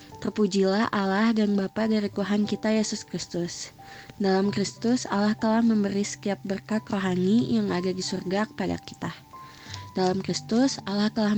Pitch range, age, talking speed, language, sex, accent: 185-220 Hz, 20-39, 140 wpm, English, female, Indonesian